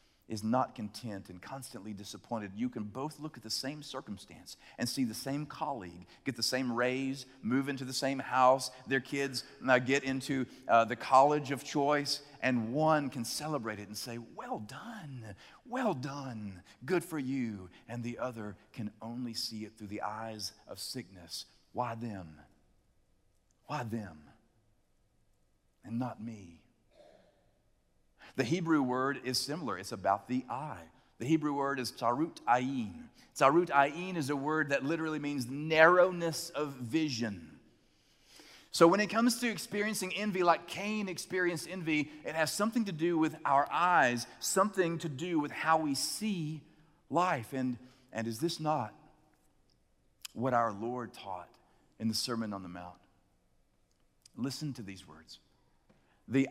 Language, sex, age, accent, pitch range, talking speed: English, male, 40-59, American, 110-155 Hz, 155 wpm